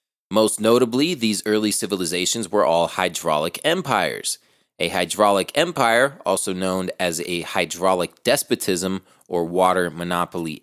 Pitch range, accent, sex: 95-135 Hz, American, male